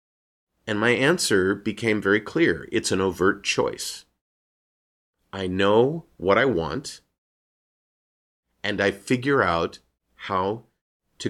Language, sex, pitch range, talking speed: English, male, 95-115 Hz, 110 wpm